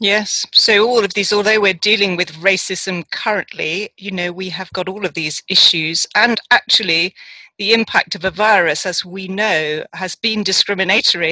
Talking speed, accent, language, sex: 175 wpm, British, English, female